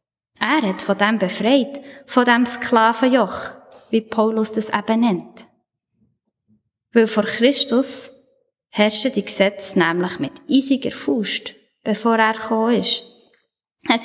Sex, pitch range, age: female, 205-260 Hz, 20-39